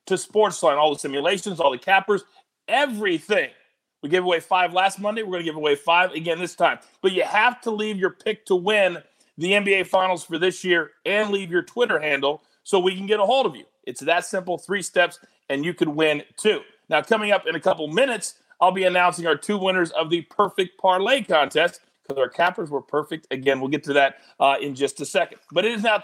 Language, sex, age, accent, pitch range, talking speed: English, male, 40-59, American, 175-215 Hz, 225 wpm